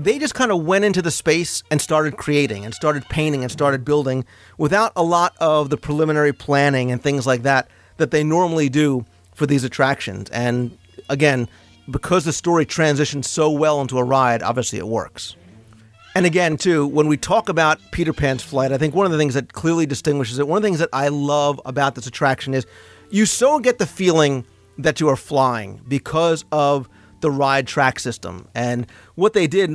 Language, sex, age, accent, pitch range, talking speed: English, male, 40-59, American, 125-160 Hz, 200 wpm